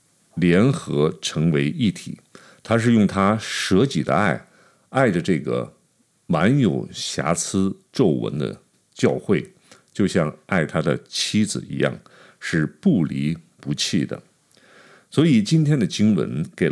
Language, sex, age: Chinese, male, 50-69